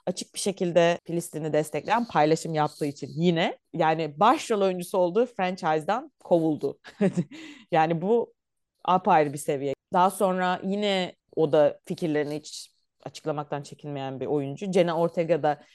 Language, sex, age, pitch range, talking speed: Turkish, female, 30-49, 155-205 Hz, 125 wpm